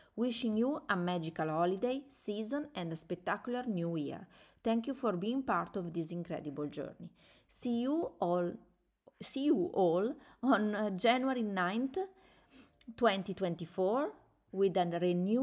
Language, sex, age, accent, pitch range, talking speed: English, female, 30-49, Italian, 175-230 Hz, 120 wpm